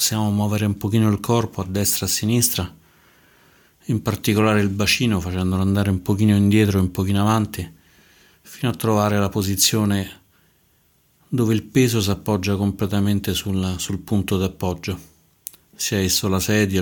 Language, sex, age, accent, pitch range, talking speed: Italian, male, 40-59, native, 95-105 Hz, 155 wpm